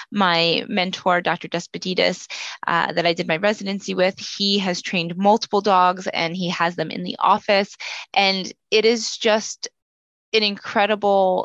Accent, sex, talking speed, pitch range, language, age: American, female, 150 wpm, 180-220 Hz, English, 20-39